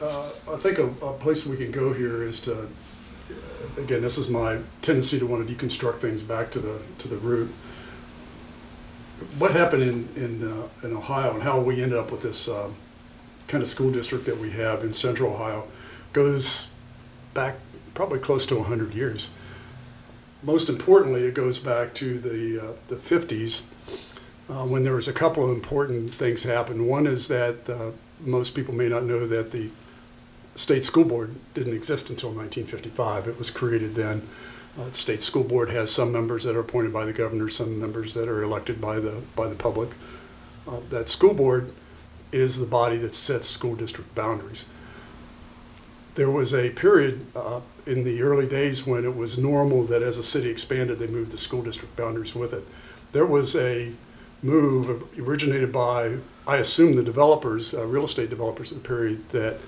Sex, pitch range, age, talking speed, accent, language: male, 115-130 Hz, 50-69, 180 wpm, American, English